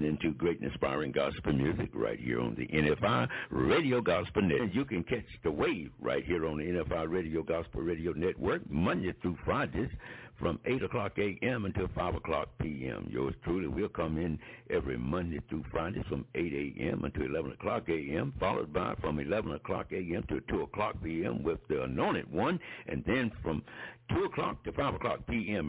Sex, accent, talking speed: male, American, 180 wpm